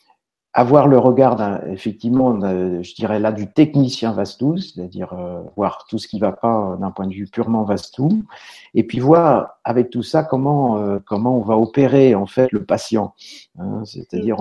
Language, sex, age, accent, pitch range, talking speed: French, male, 50-69, French, 105-130 Hz, 185 wpm